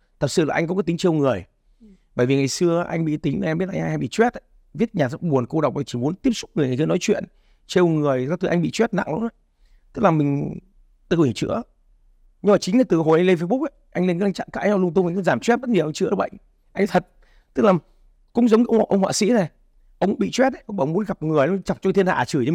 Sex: male